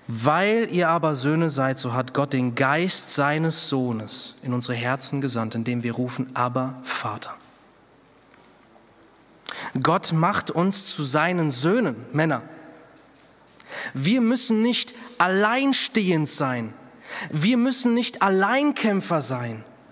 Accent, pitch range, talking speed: German, 160-235 Hz, 115 wpm